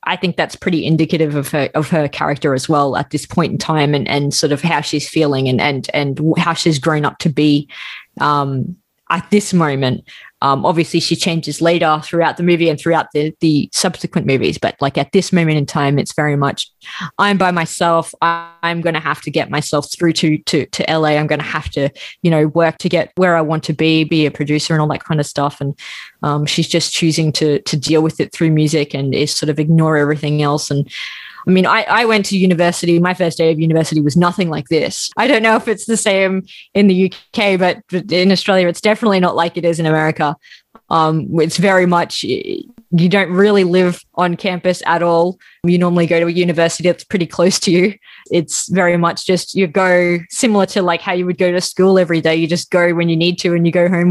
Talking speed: 230 wpm